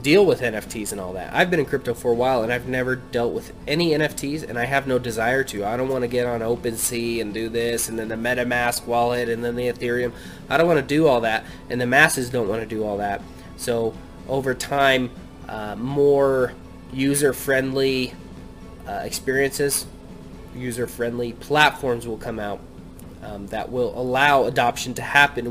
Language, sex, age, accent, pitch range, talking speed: English, male, 20-39, American, 115-135 Hz, 180 wpm